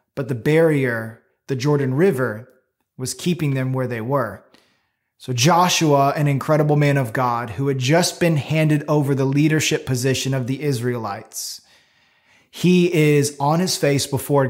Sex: male